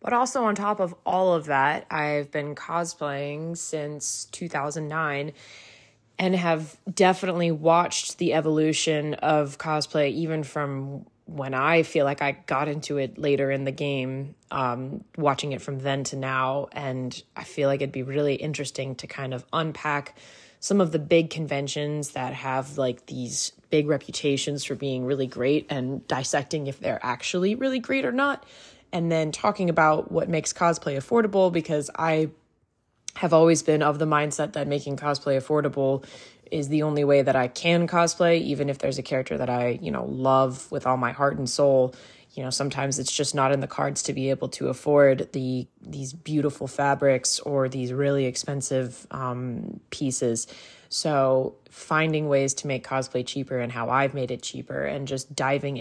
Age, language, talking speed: 20-39, English, 175 wpm